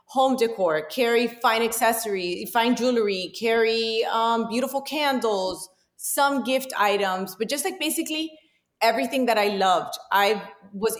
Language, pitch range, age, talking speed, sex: English, 200-240 Hz, 30-49, 130 wpm, female